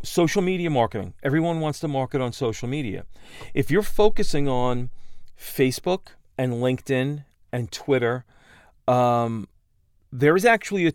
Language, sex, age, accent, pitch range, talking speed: English, male, 40-59, American, 125-180 Hz, 130 wpm